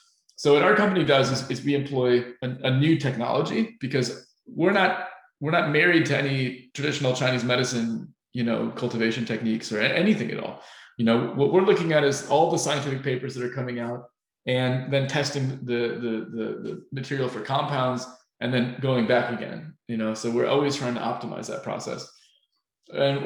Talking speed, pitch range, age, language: 185 wpm, 120-145 Hz, 20-39, English